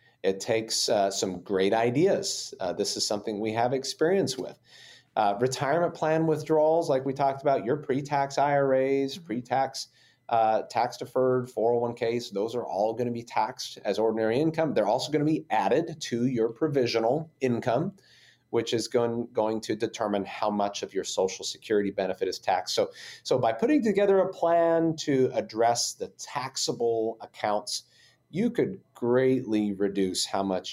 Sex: male